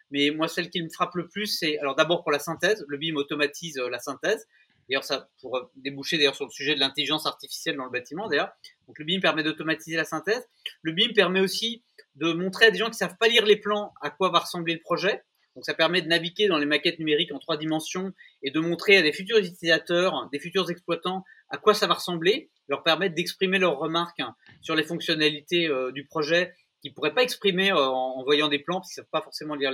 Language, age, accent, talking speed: French, 30-49, French, 235 wpm